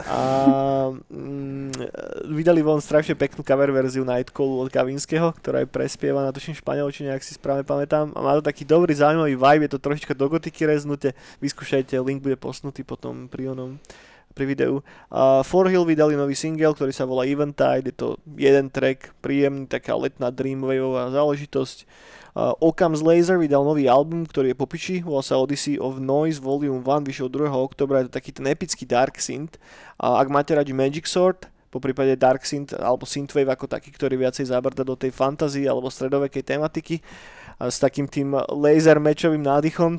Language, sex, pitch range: Slovak, male, 130-150 Hz